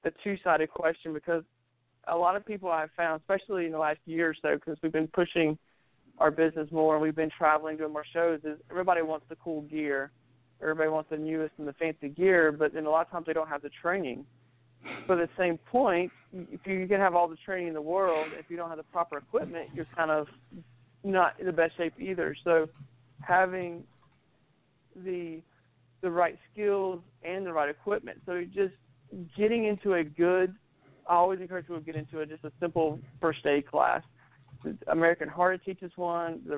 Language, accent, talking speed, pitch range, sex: English, American, 200 wpm, 150-175 Hz, male